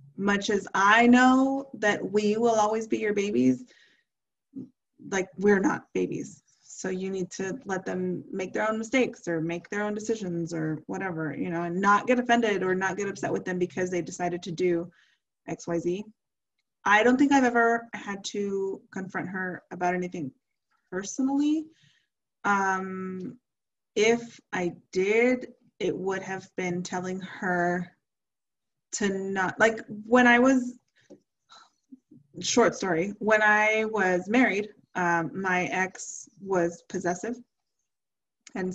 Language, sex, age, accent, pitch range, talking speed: English, female, 20-39, American, 180-230 Hz, 140 wpm